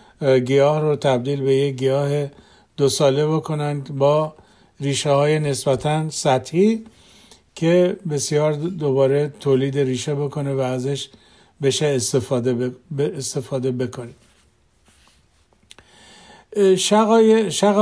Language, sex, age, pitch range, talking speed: Persian, male, 50-69, 140-165 Hz, 95 wpm